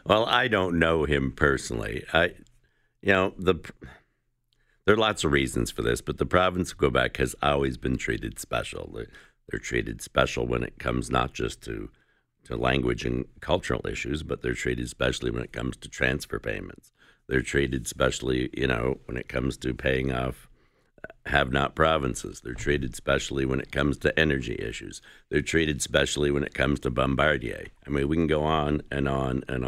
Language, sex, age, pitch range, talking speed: English, male, 60-79, 65-80 Hz, 180 wpm